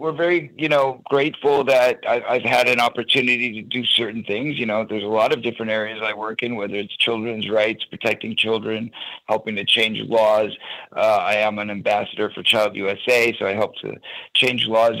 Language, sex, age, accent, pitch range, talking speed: English, male, 50-69, American, 110-135 Hz, 195 wpm